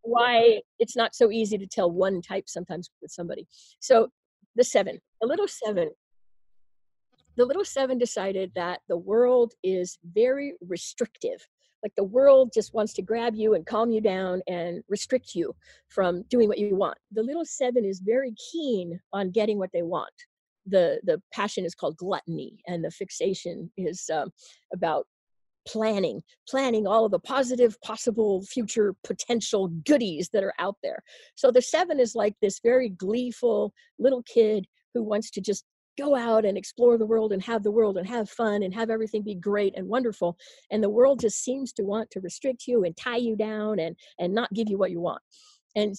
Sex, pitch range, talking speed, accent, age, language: female, 195-245 Hz, 185 wpm, American, 50-69, English